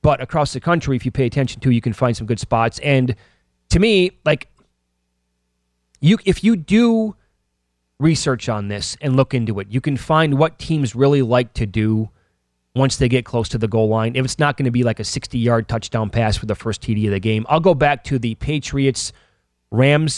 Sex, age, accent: male, 30-49, American